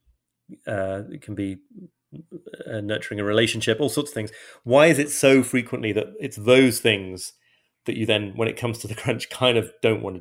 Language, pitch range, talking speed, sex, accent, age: English, 105-130 Hz, 205 wpm, male, British, 30-49